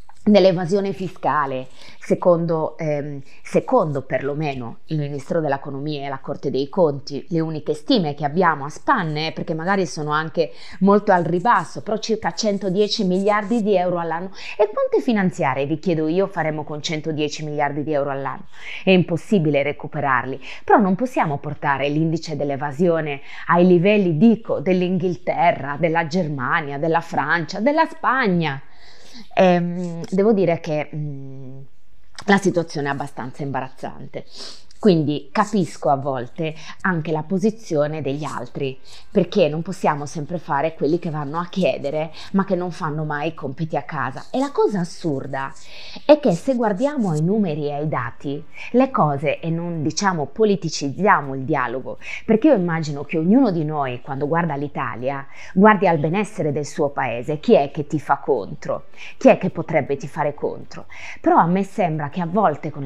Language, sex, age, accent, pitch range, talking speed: Italian, female, 20-39, native, 145-190 Hz, 155 wpm